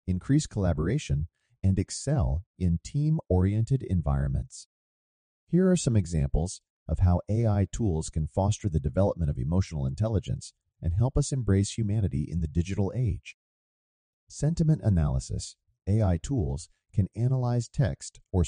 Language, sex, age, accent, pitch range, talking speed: English, male, 40-59, American, 80-115 Hz, 130 wpm